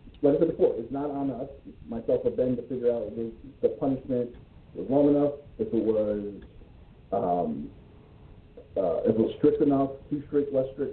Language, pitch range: English, 130-165 Hz